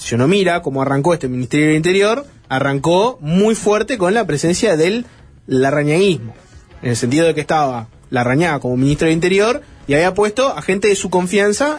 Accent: Argentinian